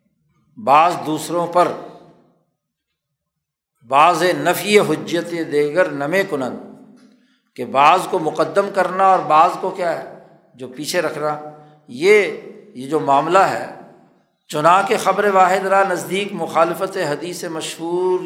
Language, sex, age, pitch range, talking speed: Urdu, male, 60-79, 155-190 Hz, 120 wpm